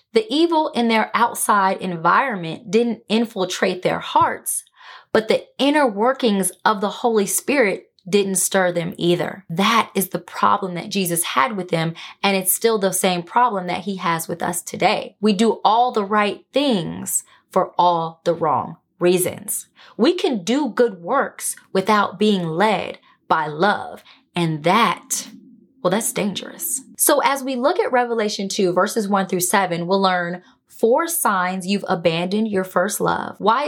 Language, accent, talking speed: English, American, 160 wpm